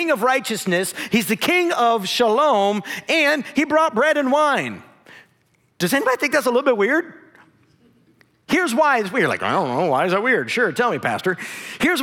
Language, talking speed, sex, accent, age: English, 190 wpm, male, American, 50-69